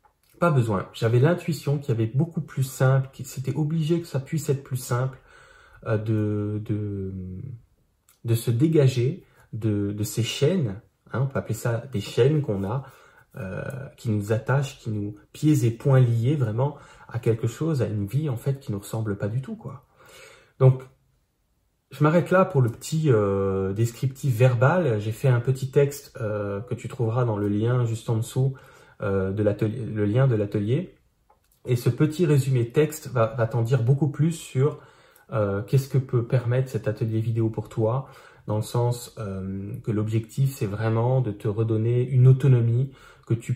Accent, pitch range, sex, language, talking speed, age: French, 110-135 Hz, male, French, 180 wpm, 30-49